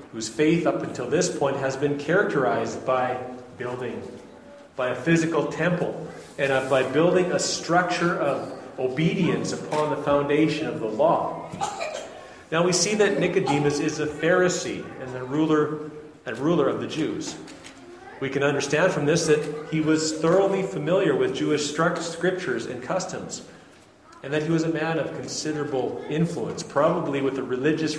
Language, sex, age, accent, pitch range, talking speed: English, male, 40-59, American, 135-170 Hz, 155 wpm